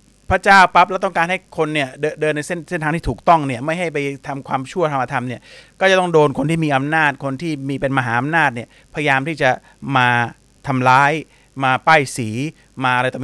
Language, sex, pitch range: Thai, male, 130-160 Hz